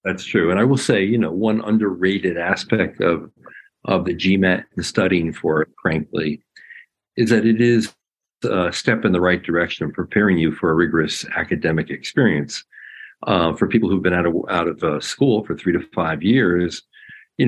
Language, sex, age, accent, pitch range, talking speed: English, male, 50-69, American, 80-105 Hz, 185 wpm